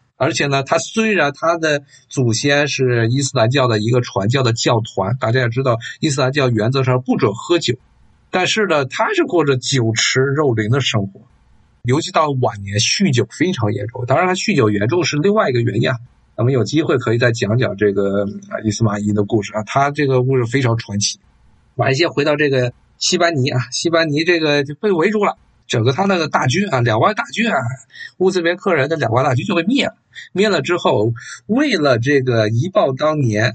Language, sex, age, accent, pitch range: Chinese, male, 50-69, native, 120-165 Hz